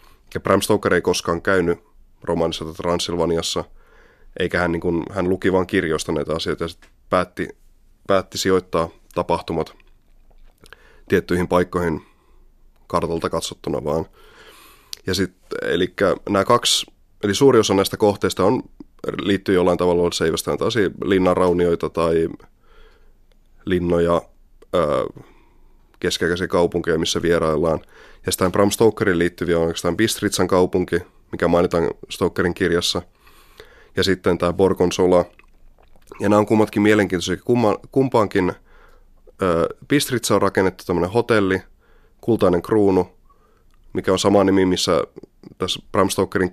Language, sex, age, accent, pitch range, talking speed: Finnish, male, 20-39, native, 85-95 Hz, 105 wpm